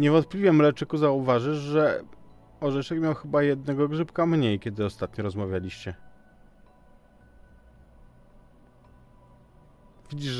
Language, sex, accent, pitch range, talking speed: Polish, male, native, 105-145 Hz, 80 wpm